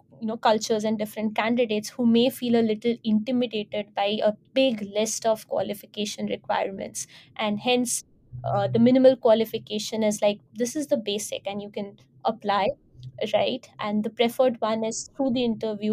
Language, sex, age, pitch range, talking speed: English, female, 20-39, 205-230 Hz, 165 wpm